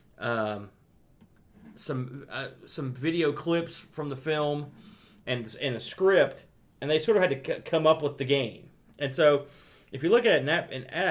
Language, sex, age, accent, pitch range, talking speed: English, male, 40-59, American, 120-155 Hz, 195 wpm